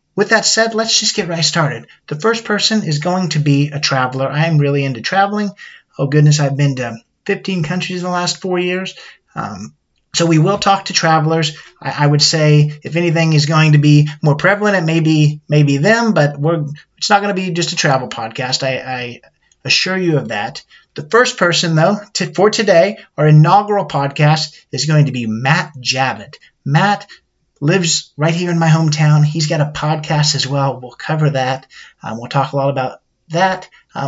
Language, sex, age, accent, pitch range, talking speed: English, male, 30-49, American, 145-185 Hz, 205 wpm